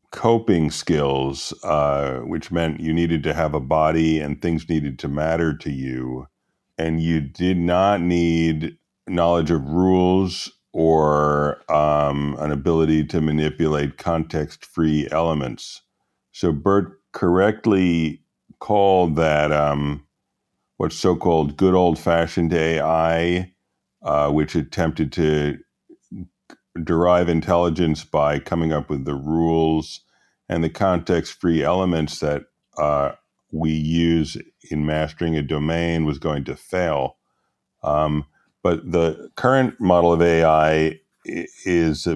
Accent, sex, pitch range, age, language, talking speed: American, male, 75-85 Hz, 50-69, English, 115 wpm